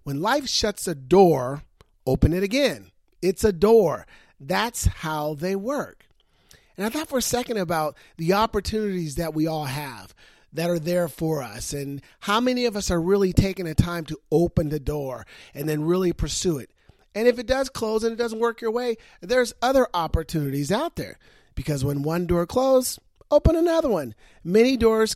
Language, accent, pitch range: English, American, 155-225 Hz